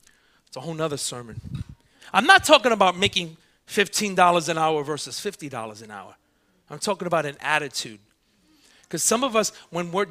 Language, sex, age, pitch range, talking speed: English, male, 30-49, 180-280 Hz, 165 wpm